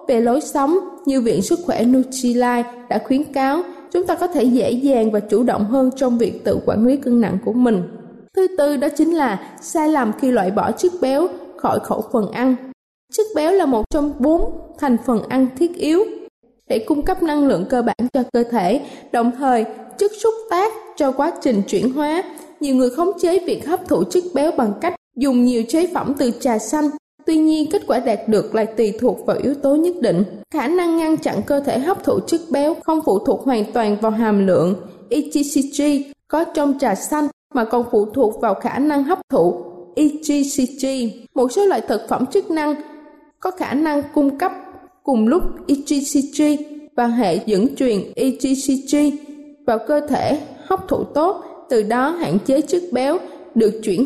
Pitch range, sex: 240-310 Hz, female